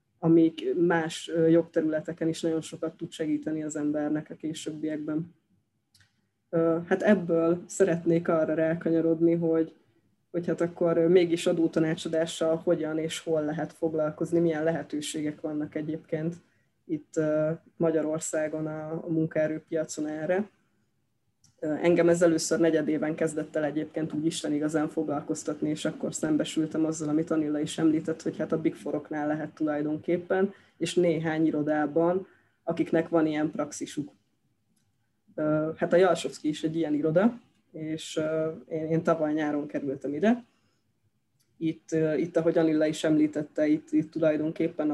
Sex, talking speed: female, 120 wpm